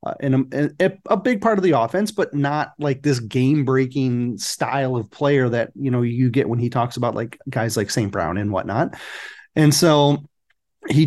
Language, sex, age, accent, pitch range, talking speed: English, male, 30-49, American, 135-175 Hz, 205 wpm